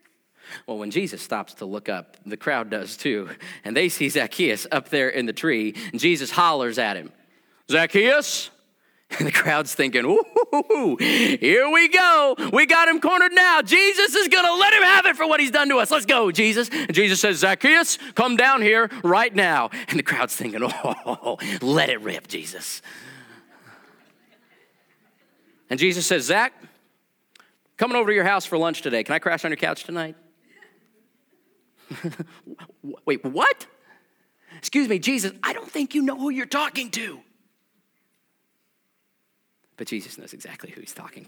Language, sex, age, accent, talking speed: English, male, 40-59, American, 165 wpm